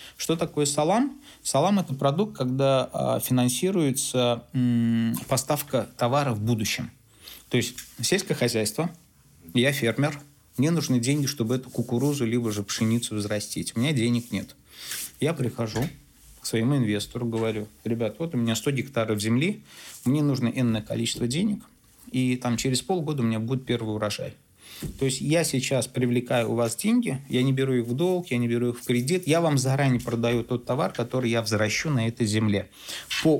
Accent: native